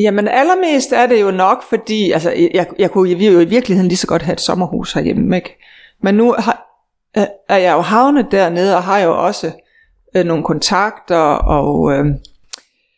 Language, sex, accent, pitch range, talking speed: Danish, female, native, 180-230 Hz, 170 wpm